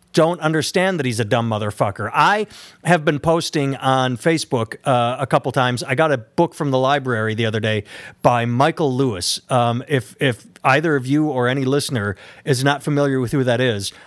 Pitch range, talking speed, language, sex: 125-150 Hz, 195 wpm, English, male